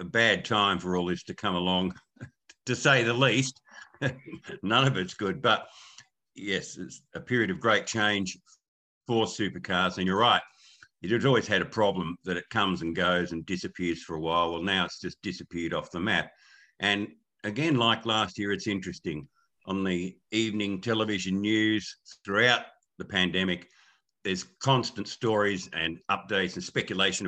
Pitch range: 90-110 Hz